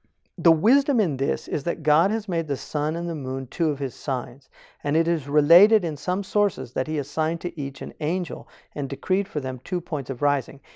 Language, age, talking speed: English, 50-69, 225 wpm